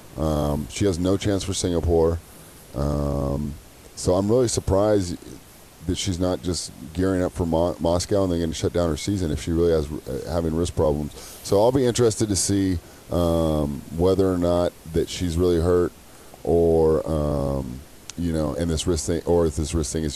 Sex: male